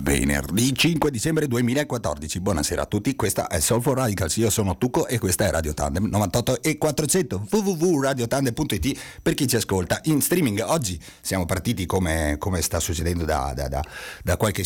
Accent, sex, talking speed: native, male, 170 wpm